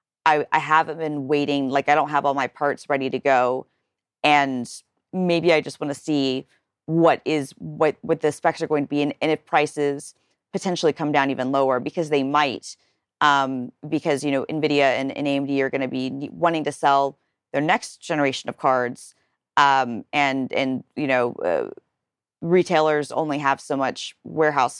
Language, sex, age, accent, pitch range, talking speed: English, female, 40-59, American, 135-150 Hz, 180 wpm